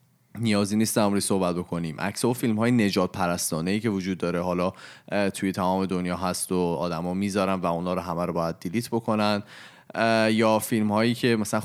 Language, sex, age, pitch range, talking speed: Persian, male, 20-39, 90-115 Hz, 180 wpm